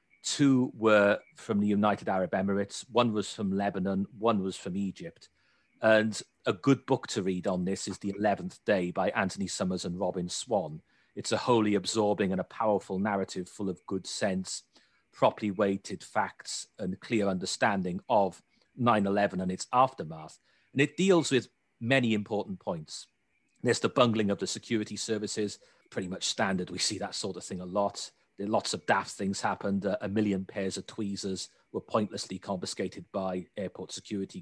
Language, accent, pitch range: English, British, 95-110 Hz